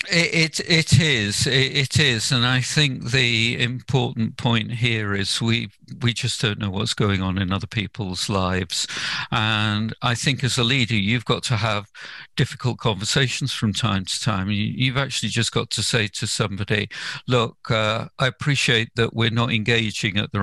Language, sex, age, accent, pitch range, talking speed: English, male, 50-69, British, 110-135 Hz, 180 wpm